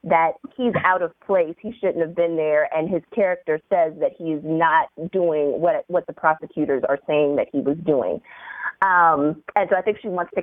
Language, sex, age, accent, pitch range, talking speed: English, female, 30-49, American, 155-190 Hz, 205 wpm